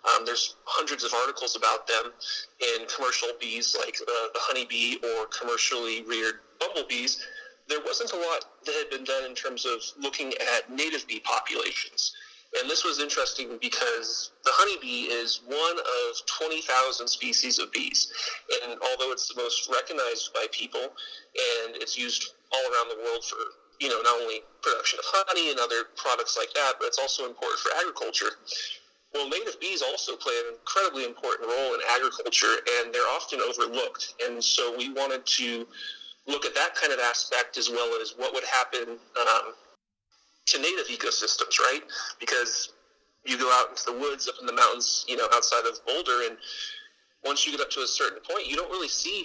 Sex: male